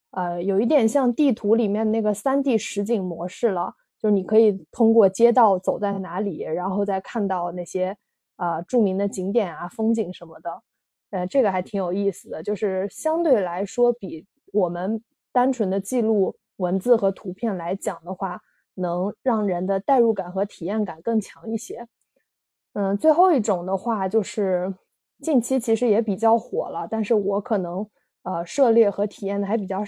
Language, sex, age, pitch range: Chinese, female, 20-39, 190-230 Hz